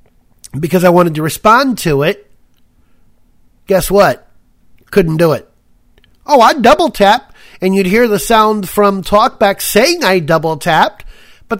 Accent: American